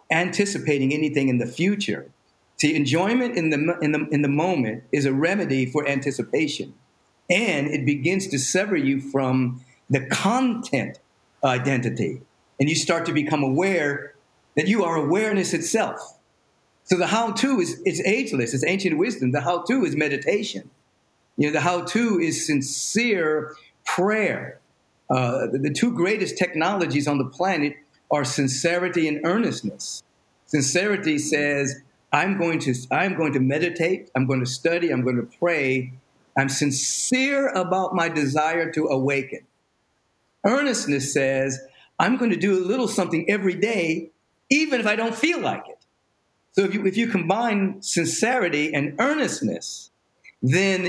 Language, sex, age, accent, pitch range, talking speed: English, male, 50-69, American, 140-195 Hz, 145 wpm